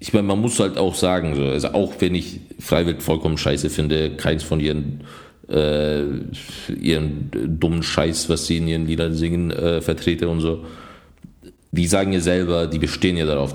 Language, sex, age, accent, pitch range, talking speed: German, male, 40-59, German, 75-90 Hz, 175 wpm